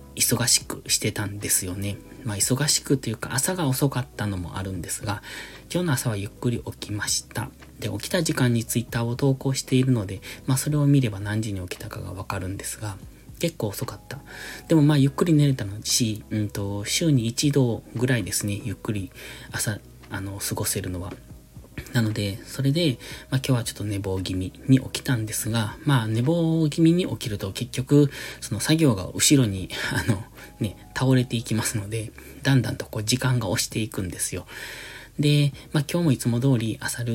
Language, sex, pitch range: Japanese, male, 105-135 Hz